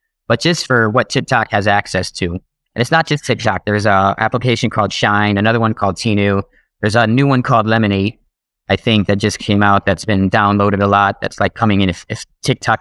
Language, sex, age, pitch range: English, male, 30-49, 100-120 Hz